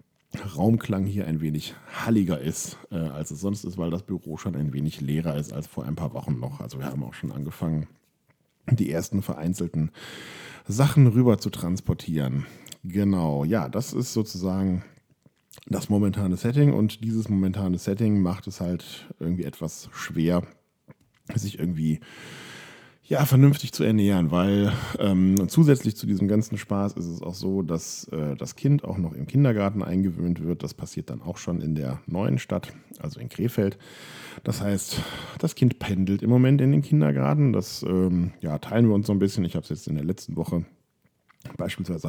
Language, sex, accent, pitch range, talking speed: German, male, German, 80-110 Hz, 175 wpm